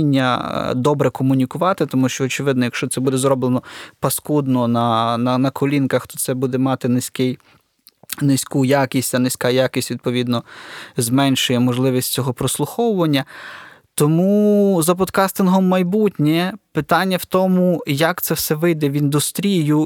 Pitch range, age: 135-165 Hz, 20-39